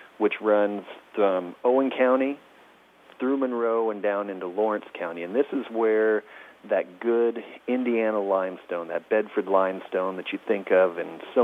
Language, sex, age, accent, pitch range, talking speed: English, male, 40-59, American, 95-120 Hz, 150 wpm